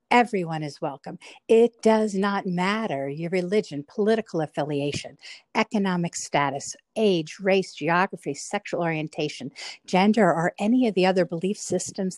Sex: female